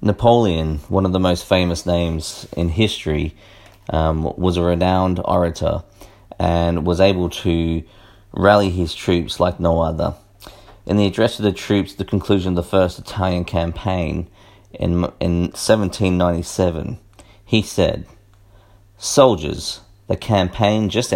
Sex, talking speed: male, 135 wpm